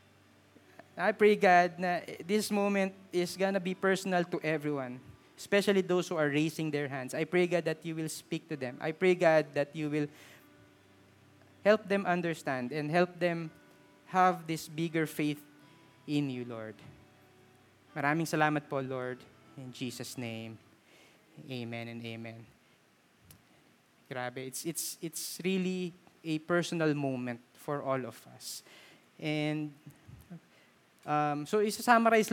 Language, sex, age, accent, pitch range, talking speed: Filipino, male, 20-39, native, 140-185 Hz, 135 wpm